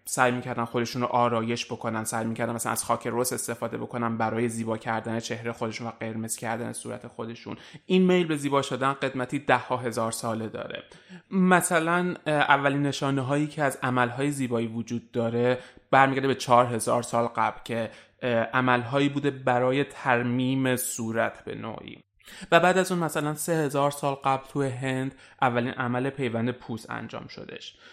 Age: 30-49